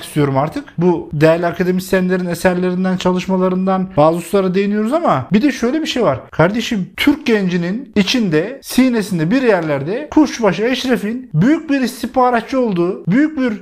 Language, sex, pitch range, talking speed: Turkish, male, 175-245 Hz, 140 wpm